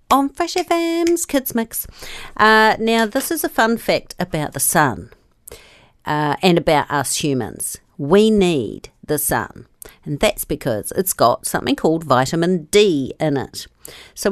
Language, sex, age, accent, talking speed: English, female, 50-69, Australian, 145 wpm